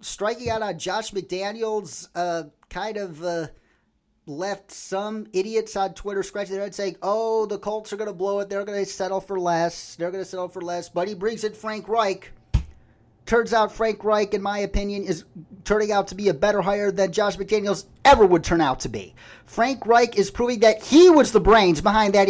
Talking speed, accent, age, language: 215 wpm, American, 30-49, English